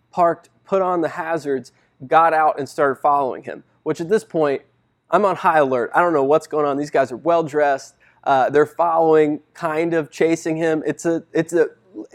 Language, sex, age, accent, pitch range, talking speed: English, male, 20-39, American, 135-170 Hz, 195 wpm